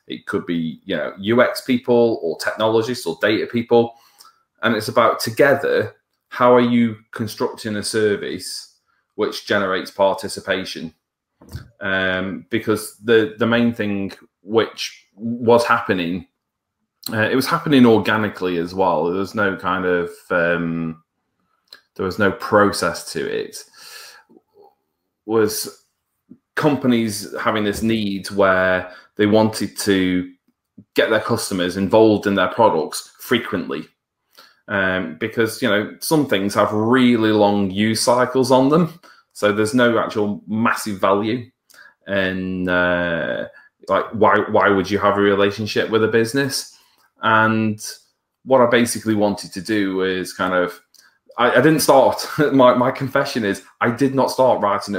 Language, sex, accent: English, male, British